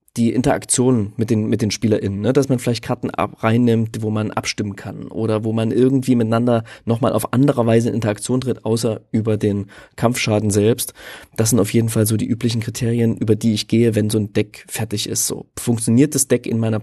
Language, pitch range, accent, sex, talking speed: German, 115-145 Hz, German, male, 215 wpm